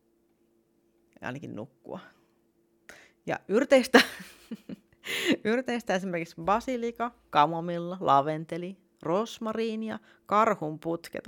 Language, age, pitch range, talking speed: Finnish, 30-49, 145-215 Hz, 65 wpm